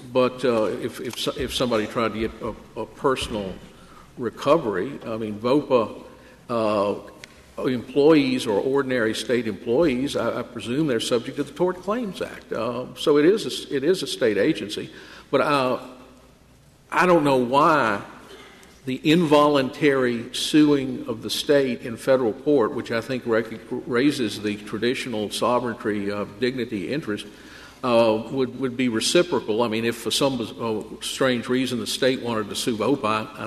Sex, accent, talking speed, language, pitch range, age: male, American, 160 wpm, English, 110-135 Hz, 50-69